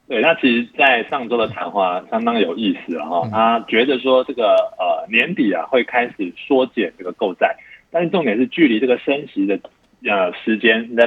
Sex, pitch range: male, 100-150 Hz